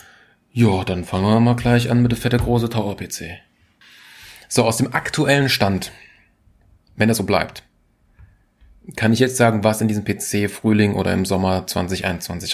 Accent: German